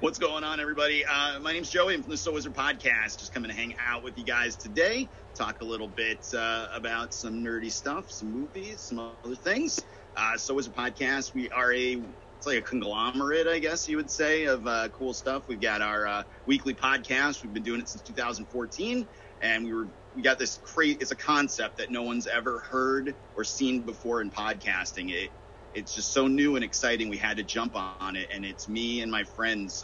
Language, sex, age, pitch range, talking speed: English, male, 30-49, 100-135 Hz, 220 wpm